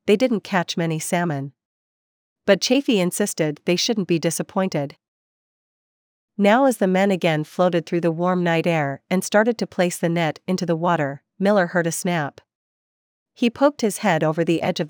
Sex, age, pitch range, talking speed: female, 40-59, 160-200 Hz, 175 wpm